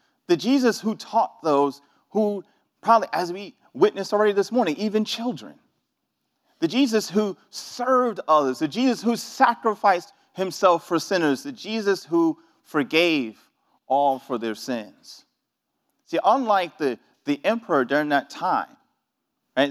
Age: 40-59